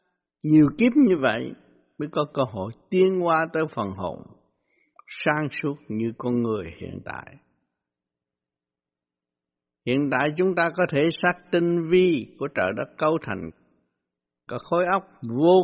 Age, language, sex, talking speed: 60-79, Vietnamese, male, 145 wpm